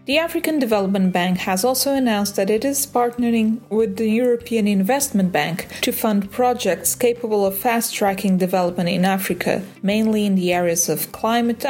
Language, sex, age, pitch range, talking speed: English, female, 30-49, 185-230 Hz, 160 wpm